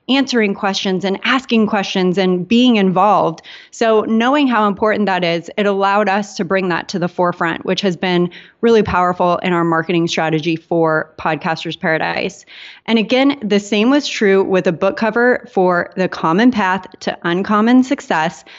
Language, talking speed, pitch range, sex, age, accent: English, 170 wpm, 190-250 Hz, female, 30-49, American